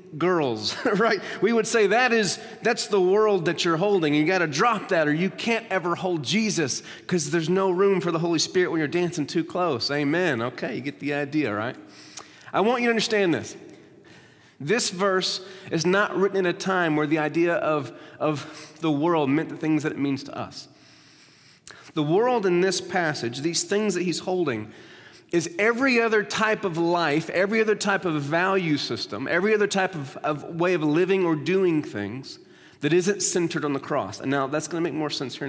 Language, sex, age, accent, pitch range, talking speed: English, male, 30-49, American, 145-190 Hz, 205 wpm